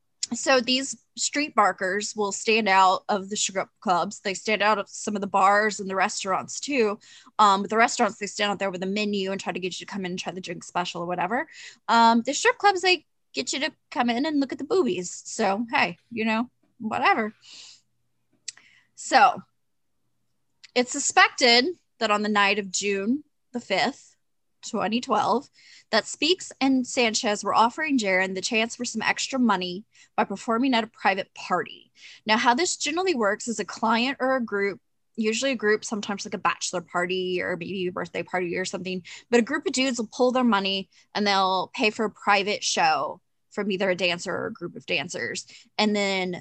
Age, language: 10-29, English